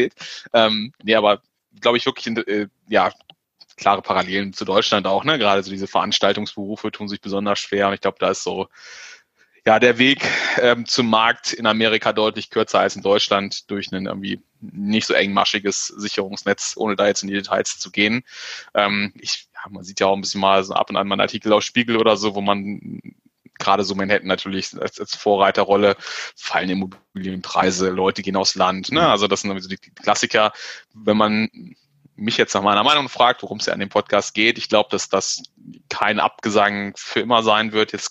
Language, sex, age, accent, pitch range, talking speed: German, male, 20-39, German, 100-110 Hz, 190 wpm